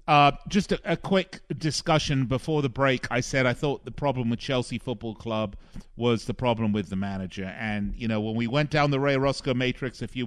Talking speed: 220 wpm